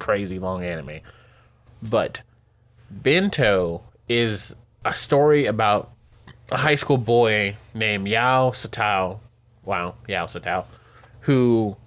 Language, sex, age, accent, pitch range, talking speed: English, male, 20-39, American, 110-130 Hz, 105 wpm